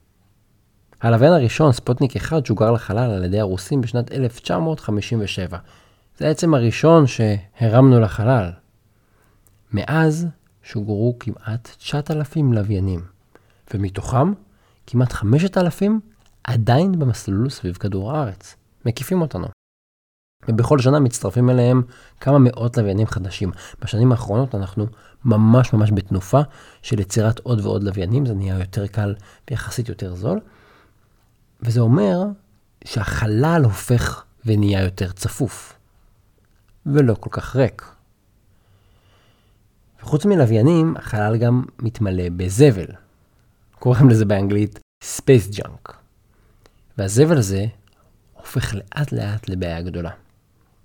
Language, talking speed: Hebrew, 100 wpm